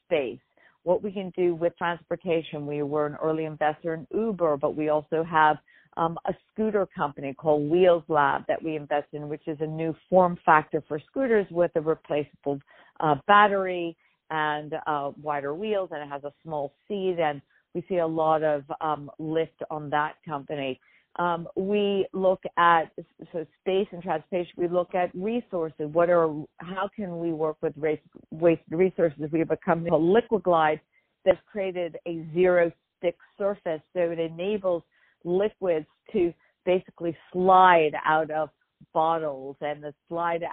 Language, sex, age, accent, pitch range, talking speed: English, female, 50-69, American, 155-180 Hz, 165 wpm